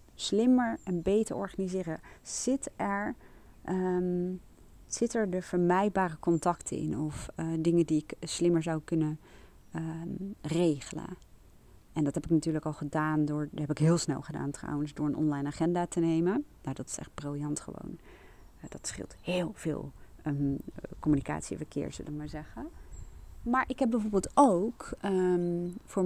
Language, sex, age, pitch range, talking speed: Dutch, female, 30-49, 155-195 Hz, 145 wpm